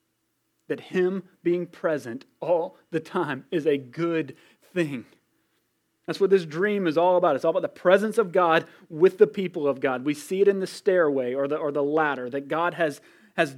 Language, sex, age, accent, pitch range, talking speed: English, male, 30-49, American, 160-215 Hz, 195 wpm